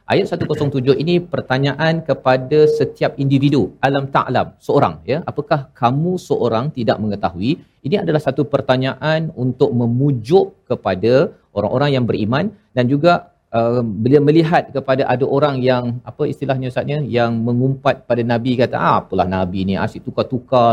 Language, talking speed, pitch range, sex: Malayalam, 140 wpm, 115-145 Hz, male